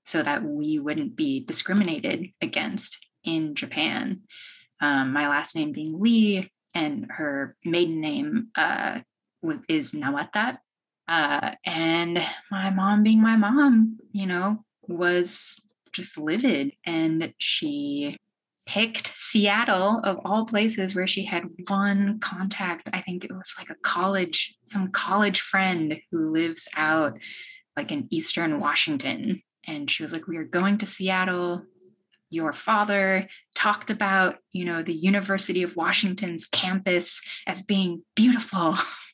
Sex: female